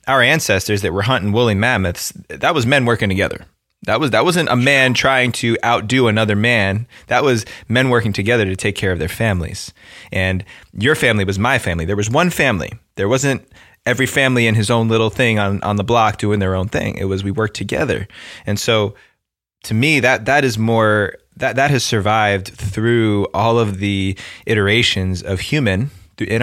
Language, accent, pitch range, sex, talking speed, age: English, American, 100-120 Hz, male, 195 wpm, 20-39